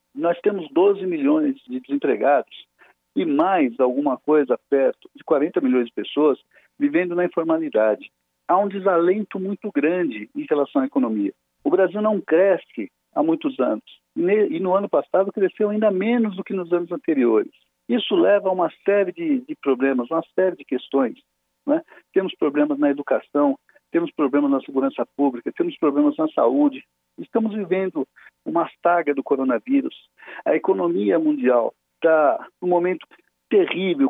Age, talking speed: 60-79, 150 wpm